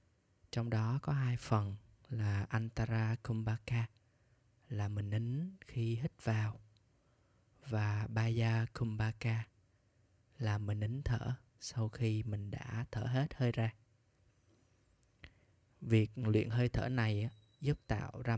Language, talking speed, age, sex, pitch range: Vietnamese, 120 wpm, 20-39, male, 110-125 Hz